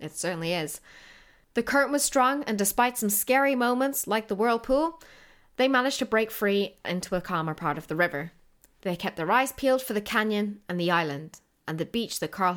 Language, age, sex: English, 20-39, female